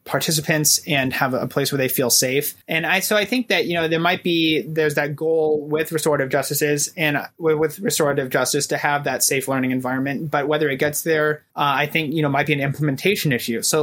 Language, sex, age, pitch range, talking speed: English, male, 20-39, 140-160 Hz, 225 wpm